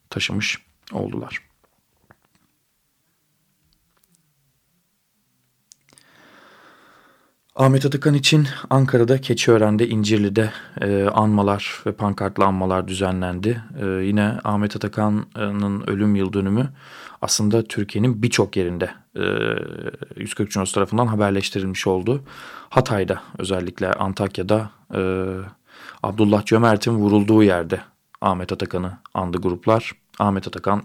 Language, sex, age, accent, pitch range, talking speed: Turkish, male, 40-59, native, 95-110 Hz, 90 wpm